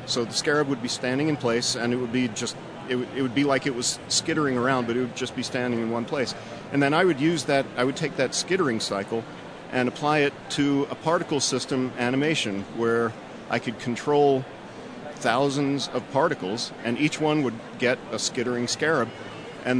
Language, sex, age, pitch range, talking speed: English, male, 50-69, 120-140 Hz, 195 wpm